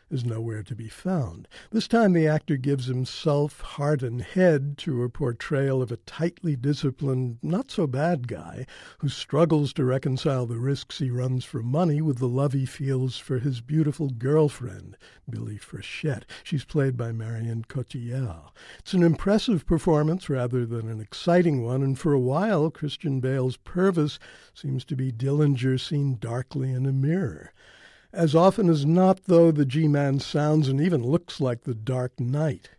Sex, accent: male, American